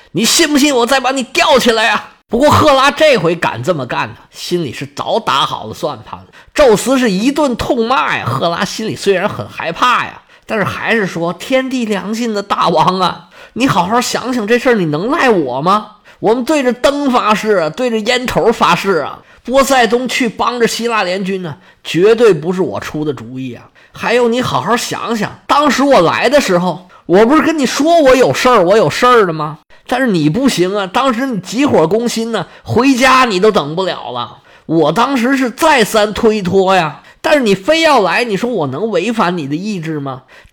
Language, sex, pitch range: Chinese, male, 185-265 Hz